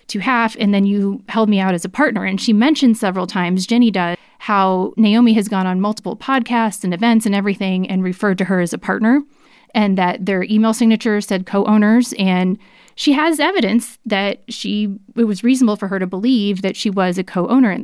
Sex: female